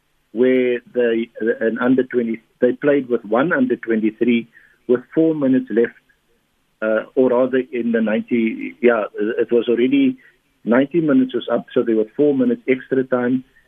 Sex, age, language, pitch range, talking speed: male, 50-69, English, 115-140 Hz, 160 wpm